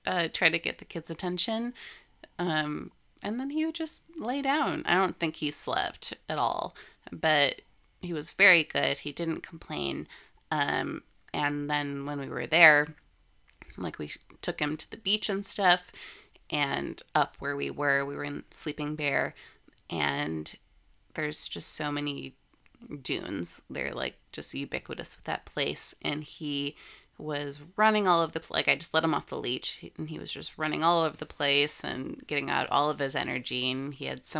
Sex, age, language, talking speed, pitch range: female, 20-39, English, 180 wpm, 145-180 Hz